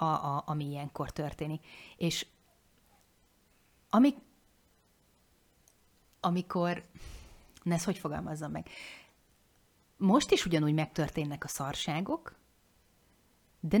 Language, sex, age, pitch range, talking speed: Hungarian, female, 30-49, 150-185 Hz, 85 wpm